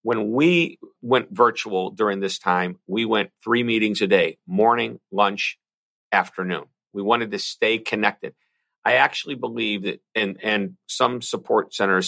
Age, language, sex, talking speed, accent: 50-69, English, male, 150 wpm, American